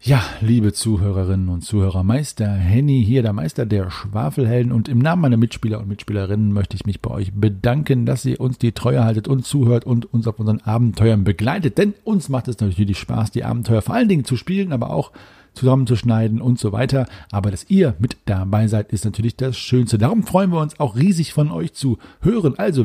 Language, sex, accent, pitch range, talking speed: German, male, German, 105-135 Hz, 205 wpm